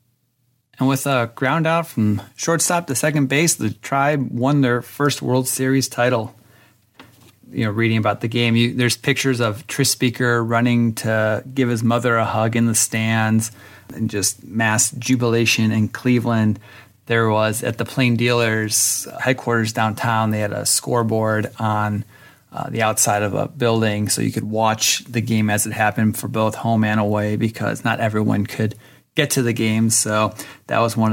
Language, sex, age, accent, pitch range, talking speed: English, male, 30-49, American, 110-125 Hz, 175 wpm